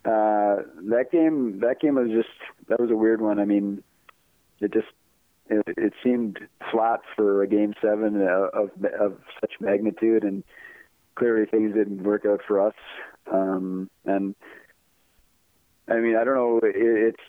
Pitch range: 100-110 Hz